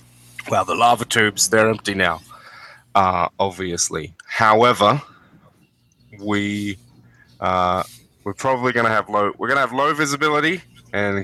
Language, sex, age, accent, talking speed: English, male, 20-39, Australian, 130 wpm